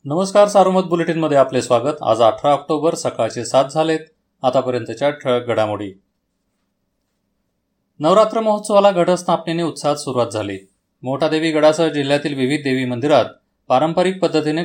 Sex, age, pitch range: male, 30-49, 120-160 Hz